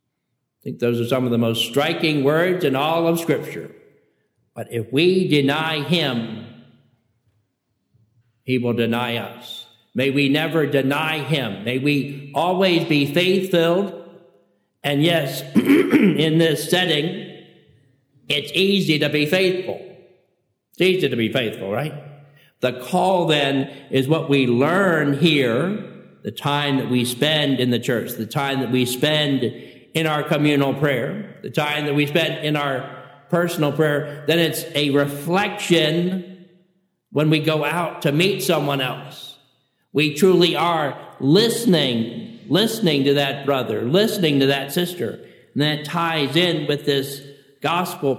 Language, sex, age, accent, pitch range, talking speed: English, male, 50-69, American, 135-170 Hz, 140 wpm